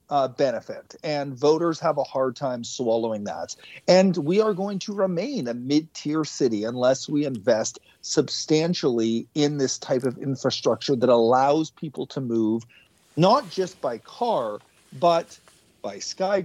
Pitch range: 140-185 Hz